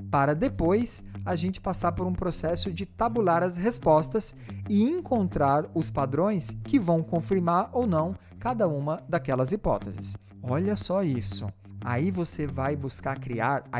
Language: Portuguese